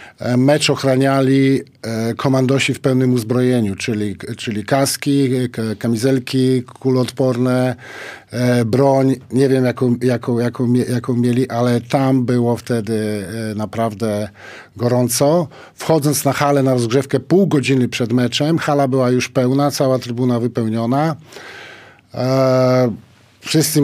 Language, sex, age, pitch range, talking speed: Polish, male, 50-69, 120-140 Hz, 100 wpm